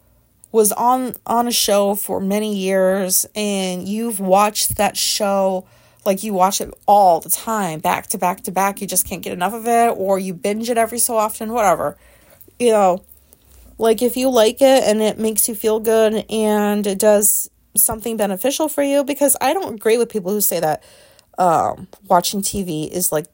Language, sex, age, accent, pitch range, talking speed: English, female, 30-49, American, 185-220 Hz, 190 wpm